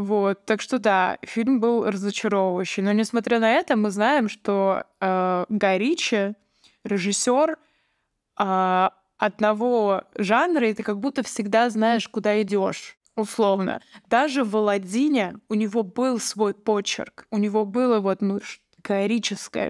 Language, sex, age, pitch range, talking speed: Russian, female, 20-39, 200-230 Hz, 130 wpm